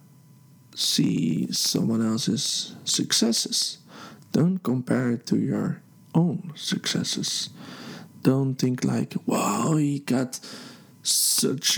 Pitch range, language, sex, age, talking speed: 140-180 Hz, English, male, 40-59, 90 wpm